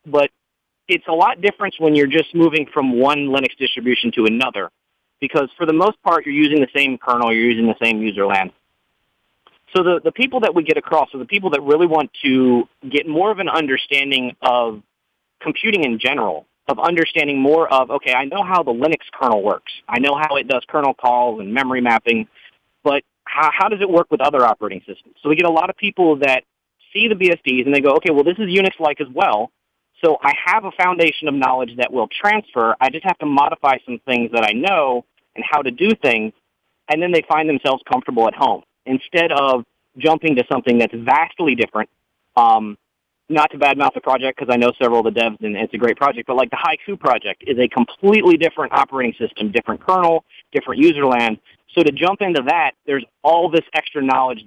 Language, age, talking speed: English, 30-49, 215 wpm